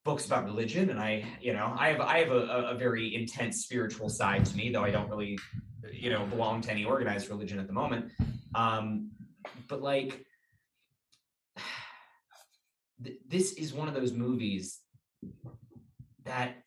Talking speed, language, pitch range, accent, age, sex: 155 wpm, English, 105-125 Hz, American, 20-39, male